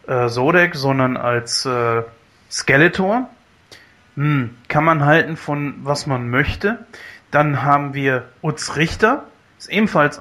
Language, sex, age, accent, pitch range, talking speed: German, male, 30-49, German, 135-175 Hz, 125 wpm